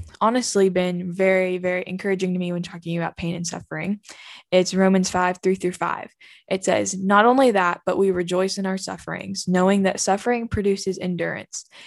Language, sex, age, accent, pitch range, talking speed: English, female, 10-29, American, 180-200 Hz, 165 wpm